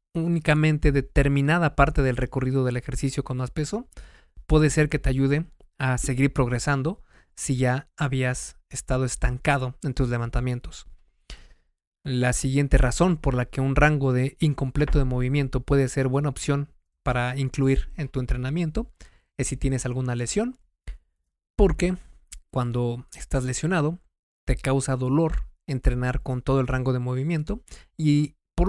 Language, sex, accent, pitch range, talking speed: Spanish, male, Mexican, 130-150 Hz, 140 wpm